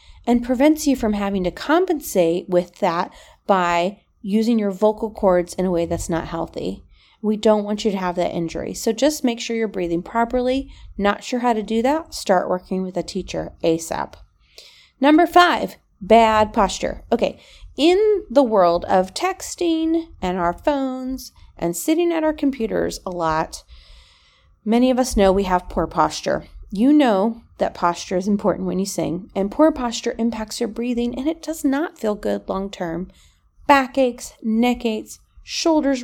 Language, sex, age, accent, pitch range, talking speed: English, female, 30-49, American, 175-245 Hz, 170 wpm